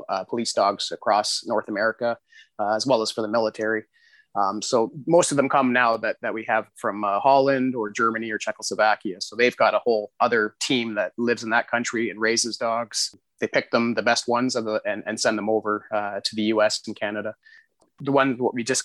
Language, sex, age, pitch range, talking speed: English, male, 30-49, 110-135 Hz, 225 wpm